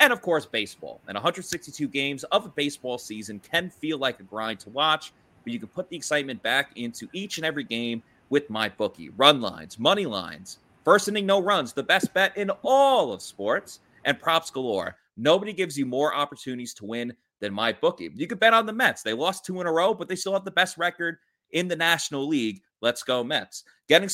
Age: 30-49